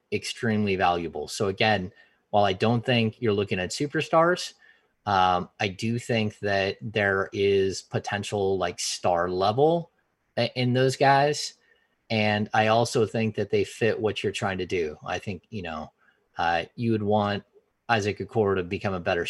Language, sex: English, male